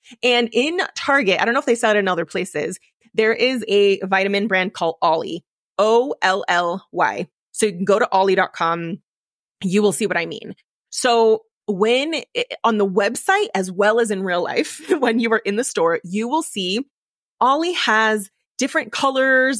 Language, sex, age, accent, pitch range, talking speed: English, female, 20-39, American, 200-255 Hz, 180 wpm